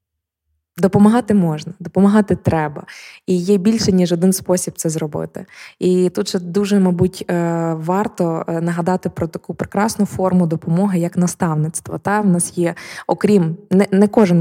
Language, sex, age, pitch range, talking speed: Ukrainian, female, 20-39, 165-185 Hz, 135 wpm